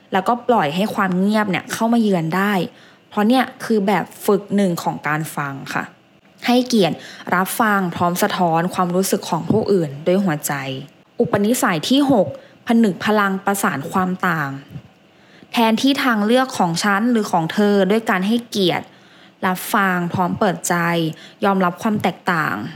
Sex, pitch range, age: female, 175-210 Hz, 20-39